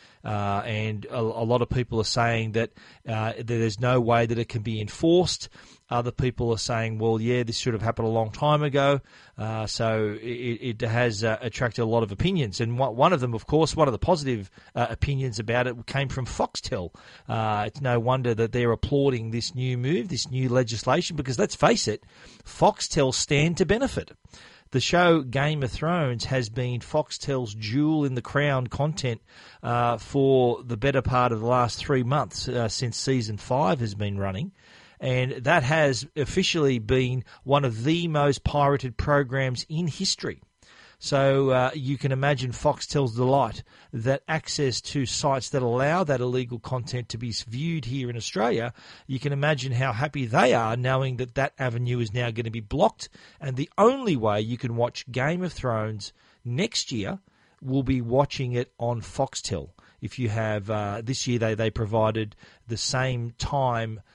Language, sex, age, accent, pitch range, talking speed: English, male, 40-59, Australian, 115-140 Hz, 180 wpm